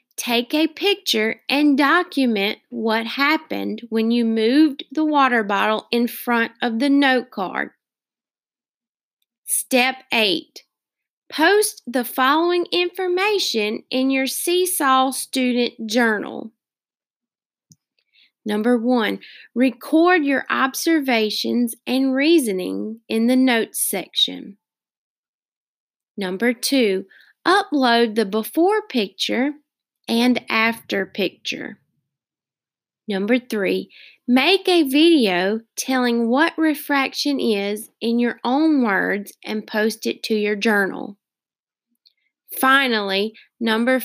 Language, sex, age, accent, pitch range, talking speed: English, female, 20-39, American, 215-280 Hz, 95 wpm